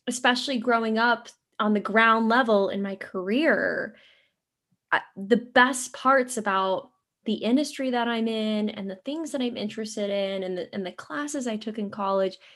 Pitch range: 195-245 Hz